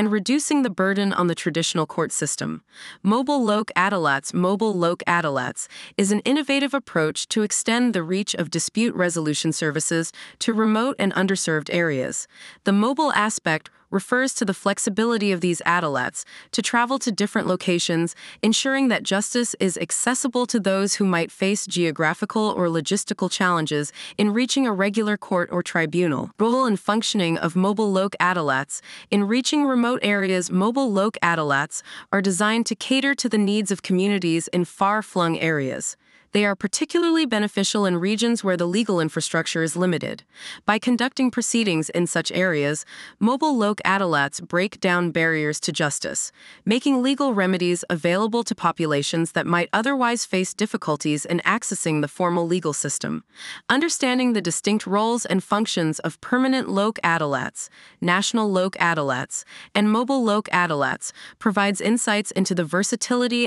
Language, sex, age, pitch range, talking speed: English, female, 20-39, 170-225 Hz, 150 wpm